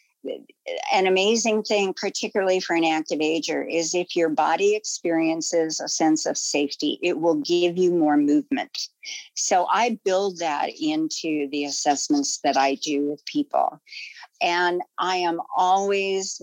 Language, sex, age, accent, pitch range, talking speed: English, female, 50-69, American, 160-210 Hz, 145 wpm